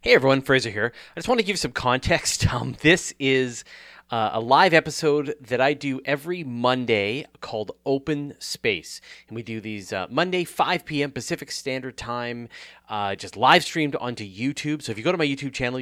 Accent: American